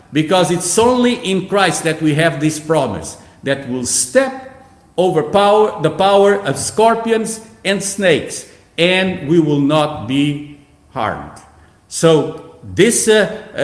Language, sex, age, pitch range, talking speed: English, male, 50-69, 150-200 Hz, 130 wpm